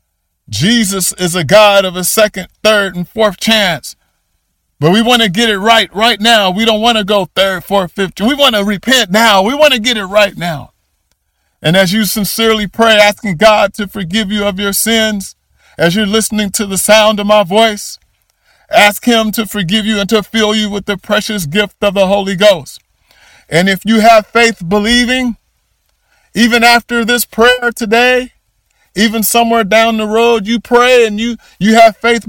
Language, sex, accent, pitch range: English, male, American, 195-230 Hz